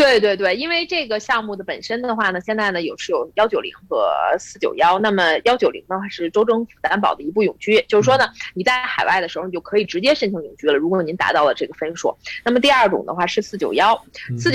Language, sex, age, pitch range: Chinese, female, 20-39, 165-215 Hz